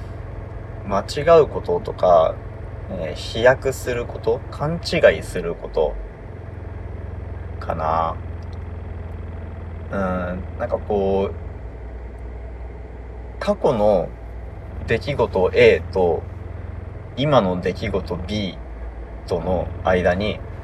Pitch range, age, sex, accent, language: 65-95 Hz, 30-49, male, native, Japanese